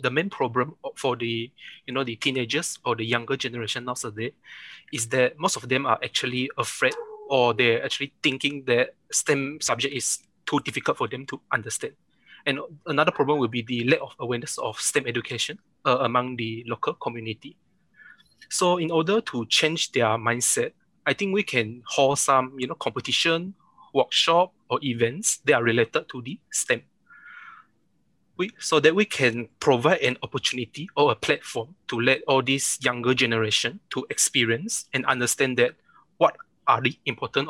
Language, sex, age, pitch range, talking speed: English, male, 20-39, 120-155 Hz, 165 wpm